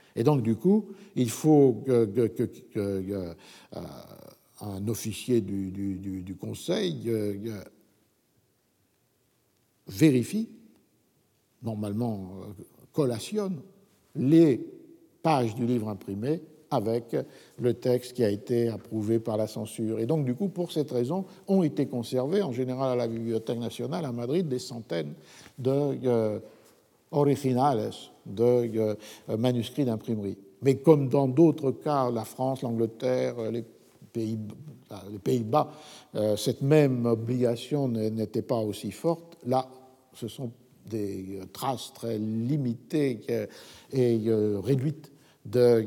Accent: French